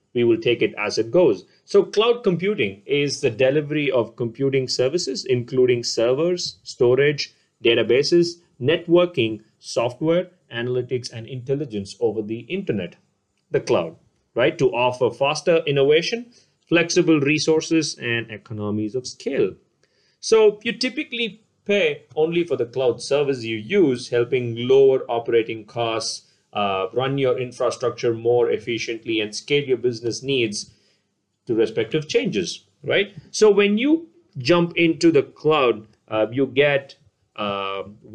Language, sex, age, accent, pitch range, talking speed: English, male, 30-49, Indian, 115-170 Hz, 130 wpm